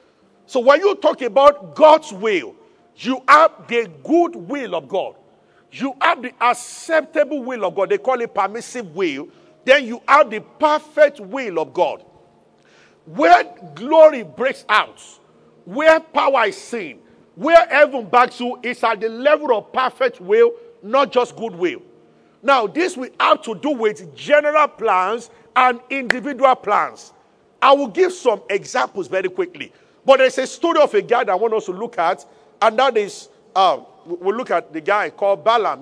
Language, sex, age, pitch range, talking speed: English, male, 50-69, 225-320 Hz, 170 wpm